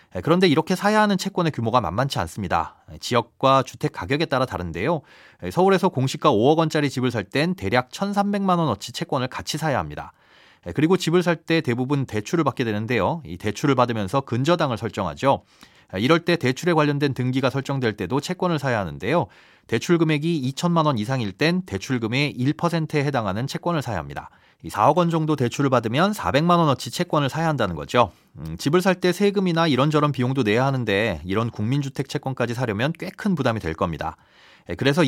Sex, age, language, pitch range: male, 30-49, Korean, 120-170 Hz